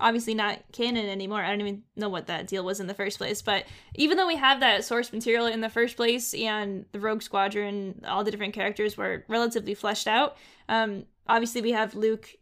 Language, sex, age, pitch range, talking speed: English, female, 10-29, 205-235 Hz, 220 wpm